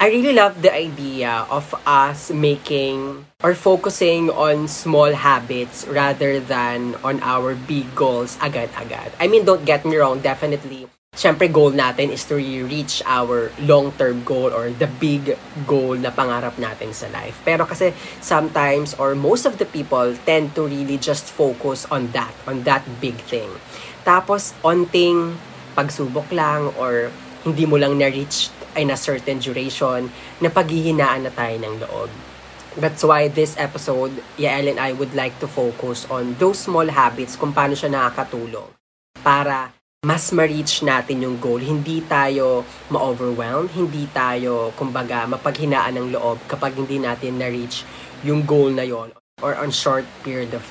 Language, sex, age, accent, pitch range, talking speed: Filipino, female, 20-39, native, 125-150 Hz, 155 wpm